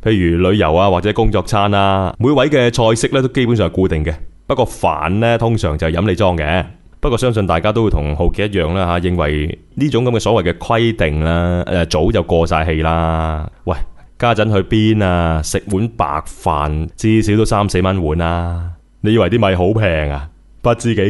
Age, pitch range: 20-39, 85-115 Hz